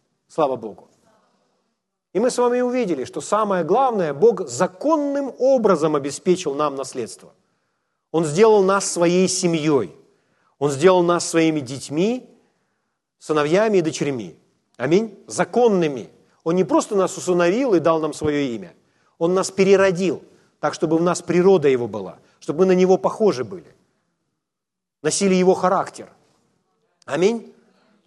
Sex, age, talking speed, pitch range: male, 40-59, 130 wpm, 155-210 Hz